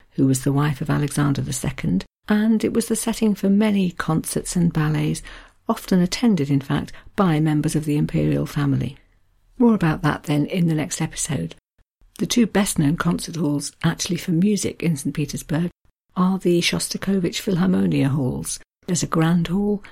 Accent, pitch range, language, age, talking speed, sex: British, 145-185 Hz, English, 50-69, 170 wpm, female